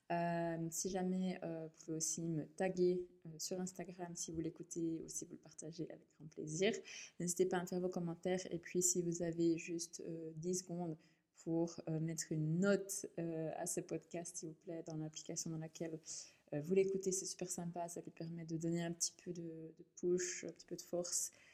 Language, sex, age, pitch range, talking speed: French, female, 20-39, 160-180 Hz, 210 wpm